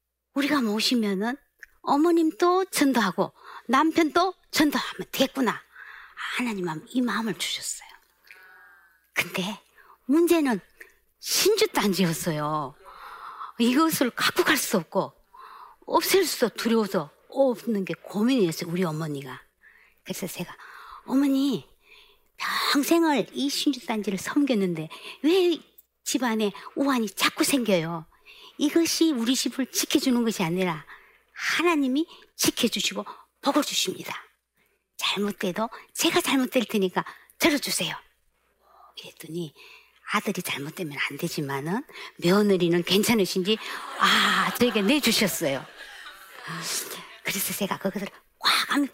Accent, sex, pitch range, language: native, male, 190-300 Hz, Korean